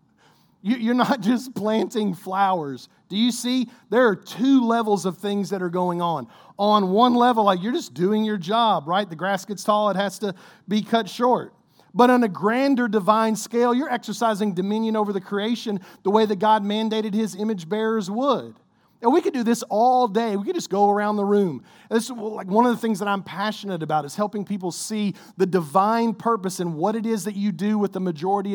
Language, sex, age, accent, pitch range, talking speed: English, male, 40-59, American, 180-220 Hz, 210 wpm